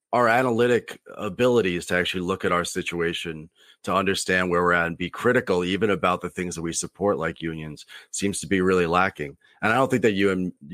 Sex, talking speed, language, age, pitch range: male, 210 wpm, English, 30-49, 85-105 Hz